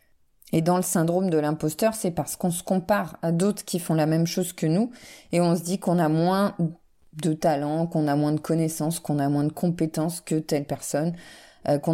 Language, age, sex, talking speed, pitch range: French, 20-39, female, 220 wpm, 160-200 Hz